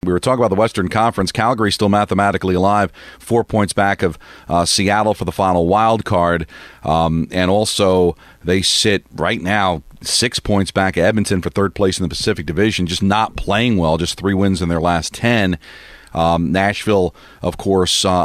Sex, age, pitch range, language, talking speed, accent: male, 40-59, 90-115 Hz, English, 185 wpm, American